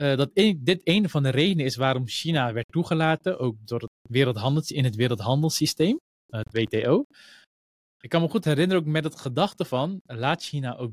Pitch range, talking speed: 125-165 Hz, 170 wpm